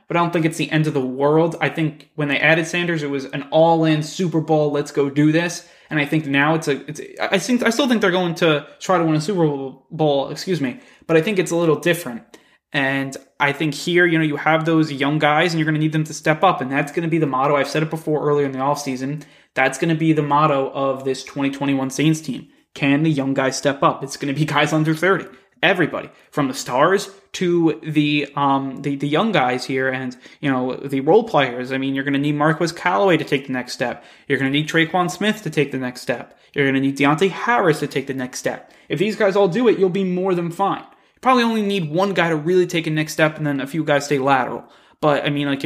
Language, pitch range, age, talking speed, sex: English, 140-165 Hz, 20-39, 265 wpm, male